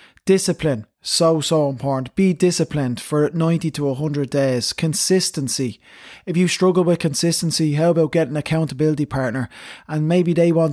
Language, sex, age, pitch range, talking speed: English, male, 20-39, 140-165 Hz, 150 wpm